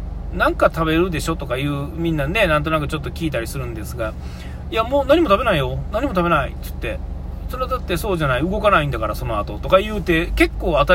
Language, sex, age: Japanese, male, 40-59